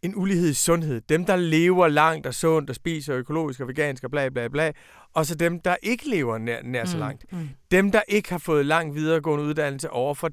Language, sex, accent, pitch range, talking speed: Danish, male, native, 150-210 Hz, 225 wpm